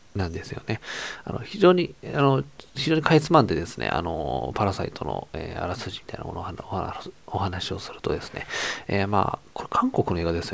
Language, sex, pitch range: Japanese, male, 90-130 Hz